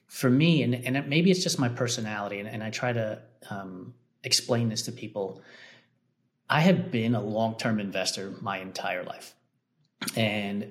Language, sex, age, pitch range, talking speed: English, male, 30-49, 105-130 Hz, 170 wpm